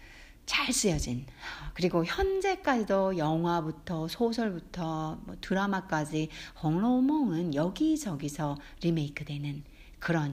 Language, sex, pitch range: Korean, female, 155-250 Hz